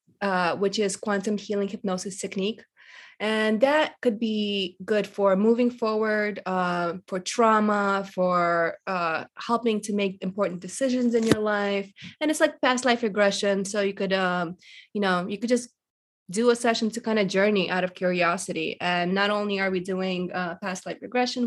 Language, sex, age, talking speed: English, female, 20-39, 175 wpm